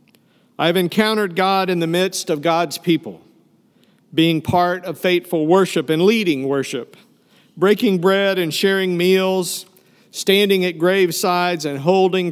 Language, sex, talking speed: English, male, 130 wpm